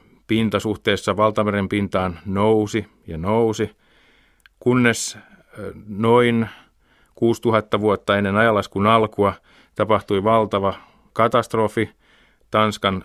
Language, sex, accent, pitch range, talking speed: Finnish, male, native, 95-110 Hz, 80 wpm